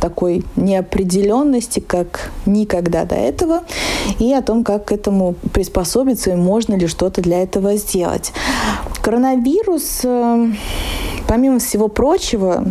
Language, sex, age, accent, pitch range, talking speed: Russian, female, 20-39, native, 185-235 Hz, 115 wpm